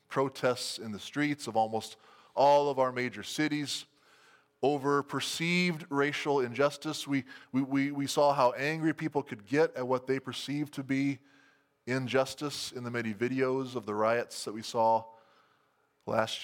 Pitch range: 115-140 Hz